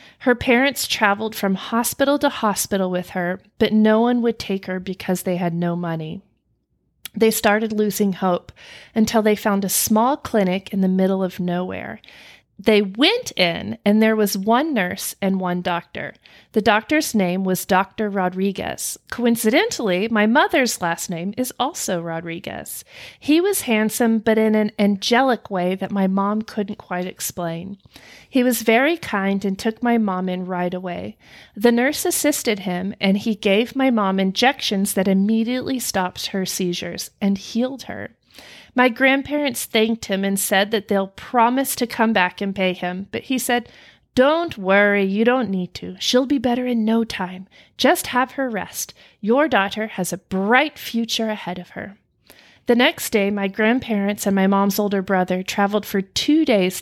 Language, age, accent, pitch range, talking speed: English, 40-59, American, 190-240 Hz, 170 wpm